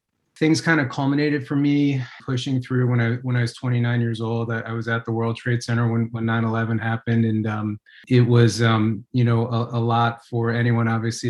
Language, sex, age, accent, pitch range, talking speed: English, male, 30-49, American, 115-120 Hz, 220 wpm